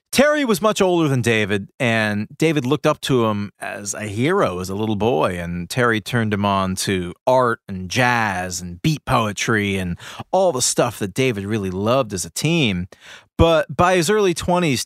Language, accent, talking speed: English, American, 190 wpm